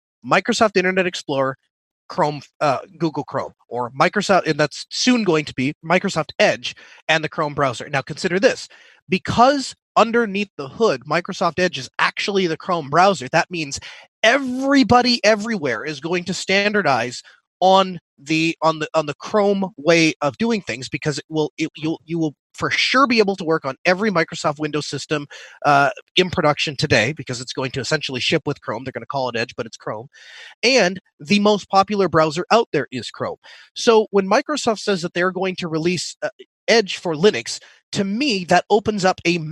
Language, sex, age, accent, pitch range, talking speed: English, male, 30-49, American, 155-205 Hz, 185 wpm